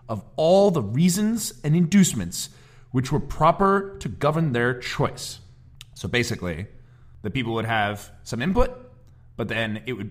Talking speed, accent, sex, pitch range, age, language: 150 wpm, American, male, 110-145 Hz, 30-49, English